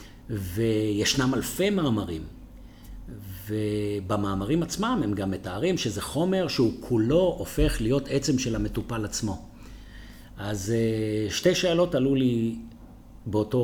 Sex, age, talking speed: male, 50-69, 105 wpm